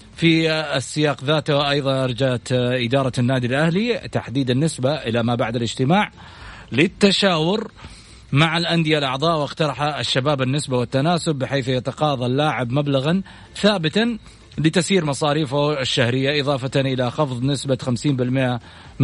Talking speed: 110 wpm